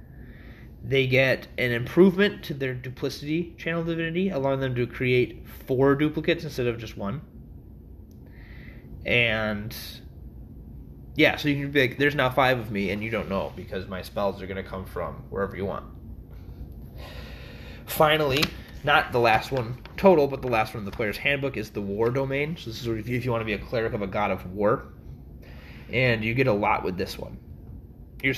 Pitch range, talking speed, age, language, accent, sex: 105-130 Hz, 185 wpm, 20-39, English, American, male